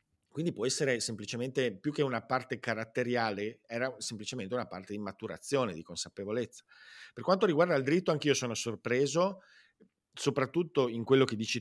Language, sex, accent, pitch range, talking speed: Italian, male, native, 105-140 Hz, 155 wpm